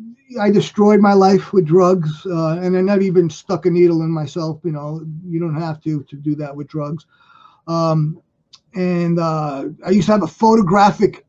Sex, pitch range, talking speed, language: male, 160-200 Hz, 185 wpm, English